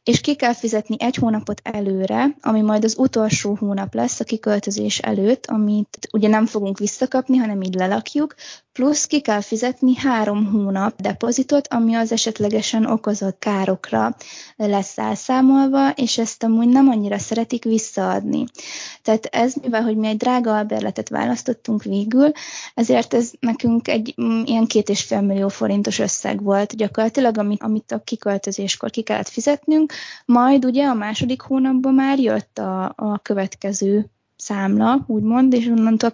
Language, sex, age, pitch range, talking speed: Hungarian, female, 20-39, 210-250 Hz, 145 wpm